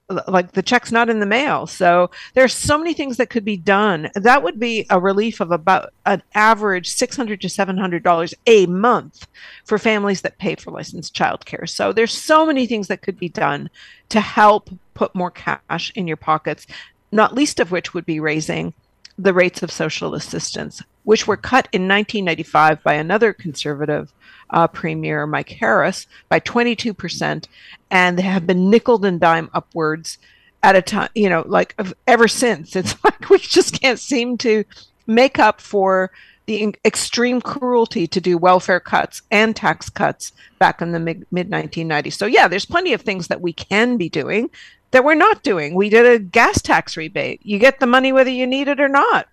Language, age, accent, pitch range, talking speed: English, 50-69, American, 180-235 Hz, 185 wpm